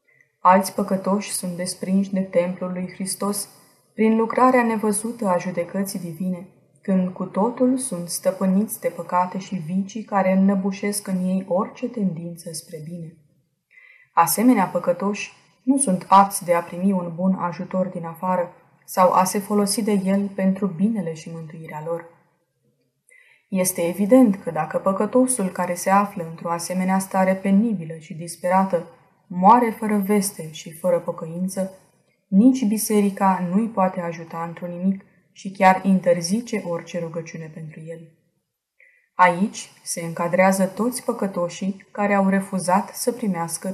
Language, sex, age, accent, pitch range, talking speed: Romanian, female, 20-39, native, 170-200 Hz, 135 wpm